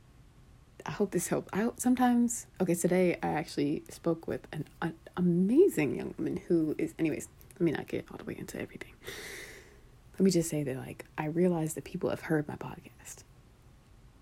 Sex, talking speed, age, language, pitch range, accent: female, 180 wpm, 30-49, English, 135-185 Hz, American